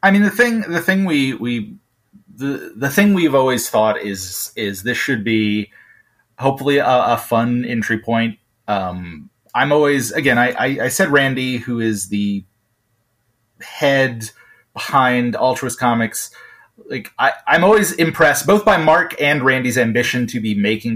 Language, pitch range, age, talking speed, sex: English, 110-150 Hz, 30-49, 155 wpm, male